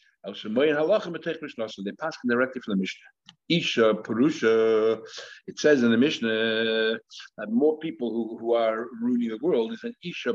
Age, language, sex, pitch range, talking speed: 60-79, English, male, 115-160 Hz, 145 wpm